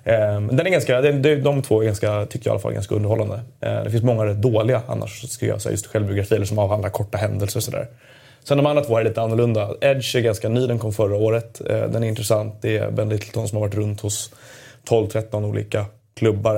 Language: Swedish